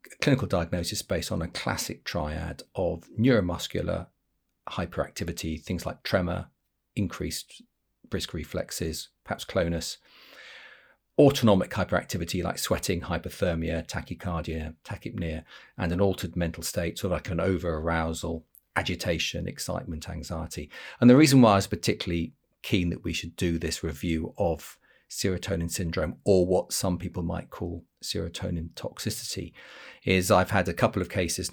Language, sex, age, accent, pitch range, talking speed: English, male, 40-59, British, 85-95 Hz, 135 wpm